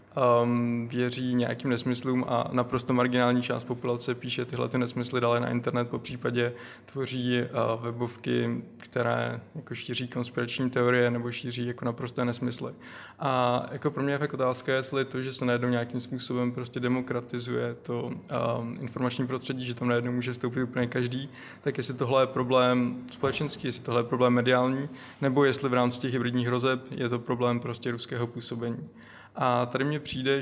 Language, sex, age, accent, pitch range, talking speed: Czech, male, 20-39, native, 120-130 Hz, 165 wpm